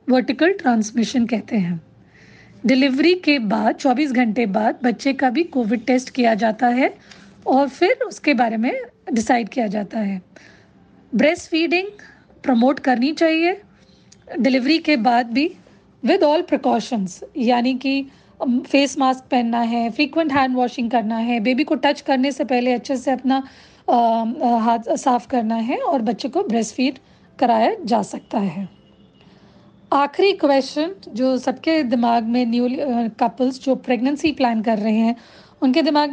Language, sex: Hindi, female